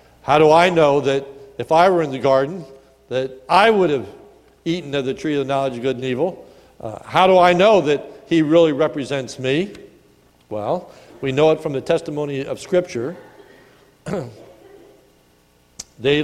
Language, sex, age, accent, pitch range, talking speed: English, male, 60-79, American, 125-185 Hz, 170 wpm